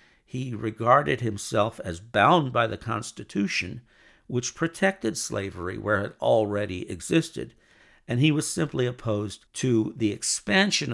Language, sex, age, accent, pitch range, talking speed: English, male, 50-69, American, 110-165 Hz, 125 wpm